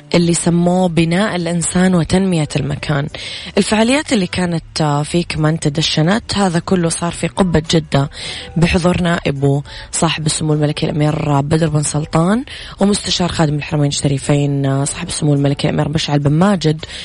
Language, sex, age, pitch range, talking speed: Arabic, female, 20-39, 150-175 Hz, 135 wpm